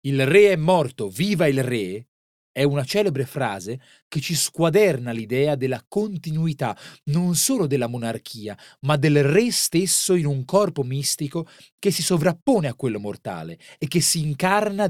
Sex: male